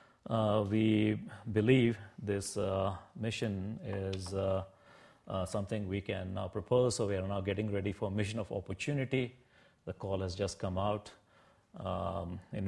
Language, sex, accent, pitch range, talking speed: English, male, Indian, 95-110 Hz, 155 wpm